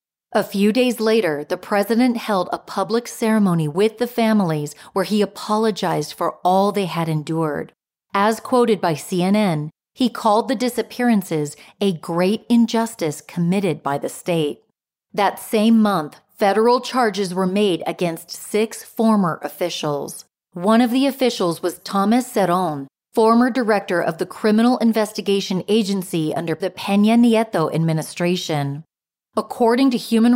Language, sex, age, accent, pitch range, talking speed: English, female, 40-59, American, 170-225 Hz, 135 wpm